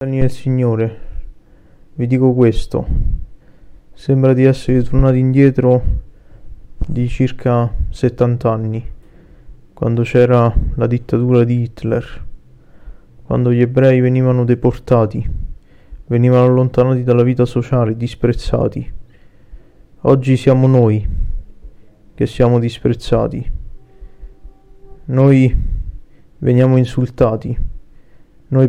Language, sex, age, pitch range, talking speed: Italian, male, 20-39, 115-130 Hz, 85 wpm